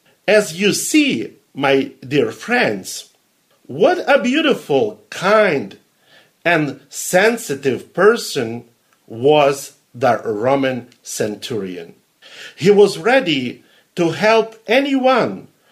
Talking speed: 90 wpm